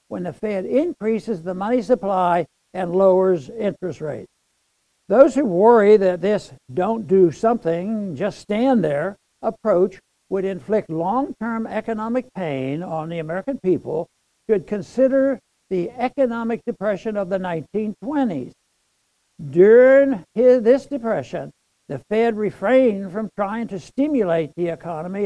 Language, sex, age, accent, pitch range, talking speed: English, male, 60-79, American, 185-240 Hz, 125 wpm